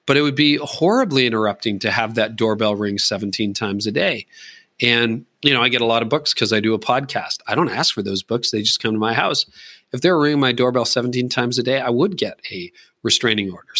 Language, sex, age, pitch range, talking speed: English, male, 40-59, 110-135 Hz, 245 wpm